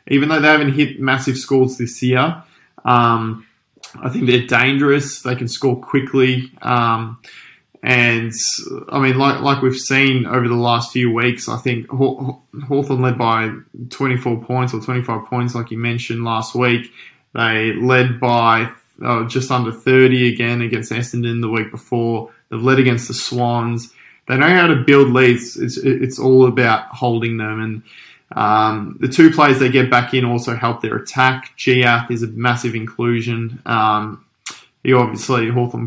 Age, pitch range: 20-39, 115-130 Hz